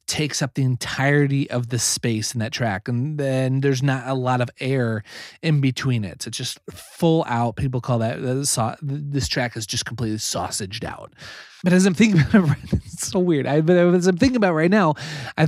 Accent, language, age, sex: American, English, 30-49, male